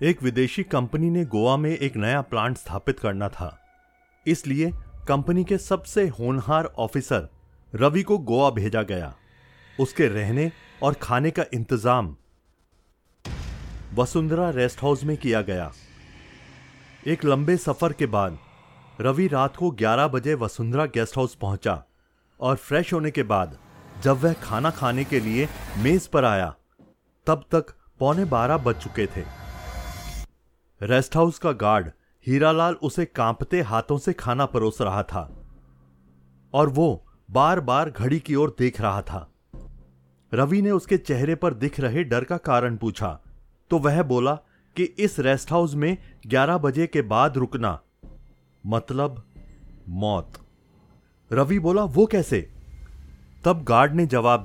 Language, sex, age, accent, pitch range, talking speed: Hindi, male, 30-49, native, 100-155 Hz, 140 wpm